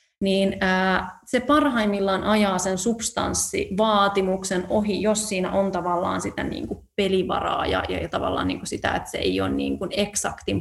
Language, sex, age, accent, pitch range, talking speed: Finnish, female, 30-49, native, 190-220 Hz, 145 wpm